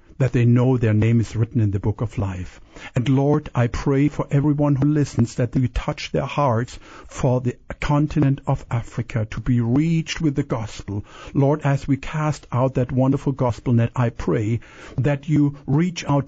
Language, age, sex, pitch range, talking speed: English, 50-69, male, 115-150 Hz, 190 wpm